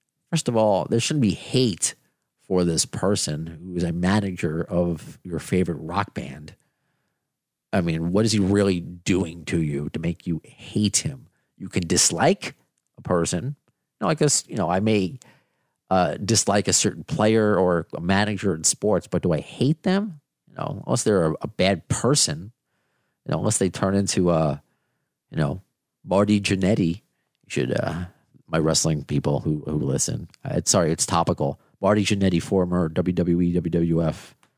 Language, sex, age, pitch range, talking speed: English, male, 40-59, 85-125 Hz, 170 wpm